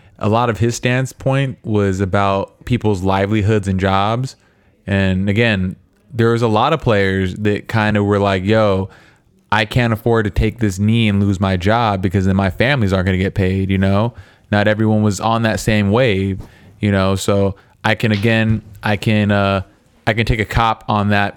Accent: American